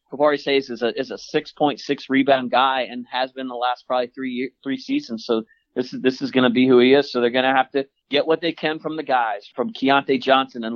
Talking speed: 260 wpm